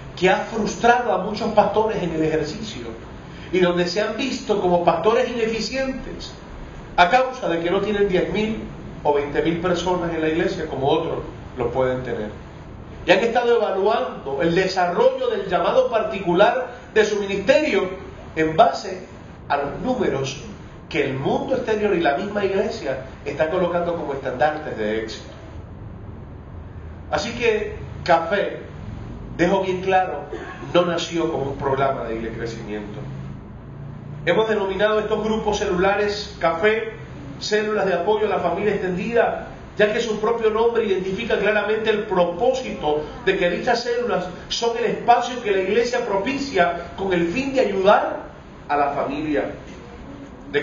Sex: male